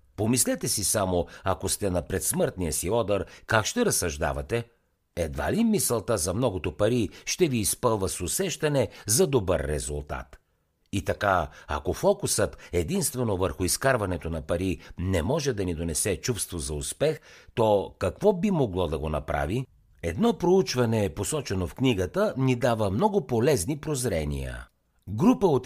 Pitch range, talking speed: 85-140 Hz, 145 wpm